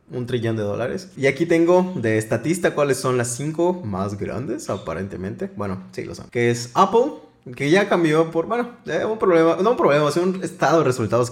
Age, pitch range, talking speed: 20-39, 110-165 Hz, 205 wpm